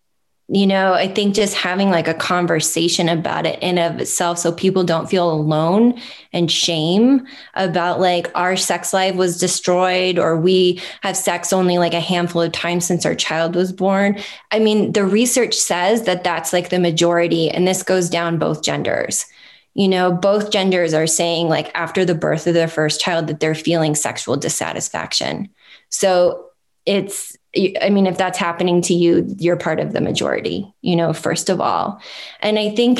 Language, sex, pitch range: English, female, 170-195 Hz